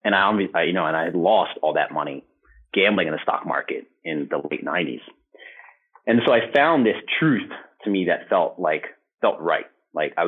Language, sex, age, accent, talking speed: English, male, 30-49, American, 205 wpm